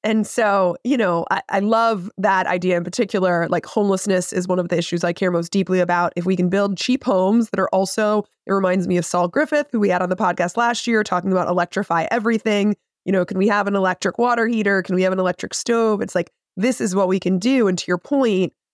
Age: 20-39